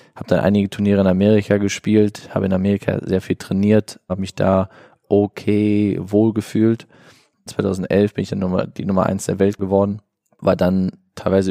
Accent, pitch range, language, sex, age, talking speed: German, 90-105 Hz, German, male, 20-39, 170 wpm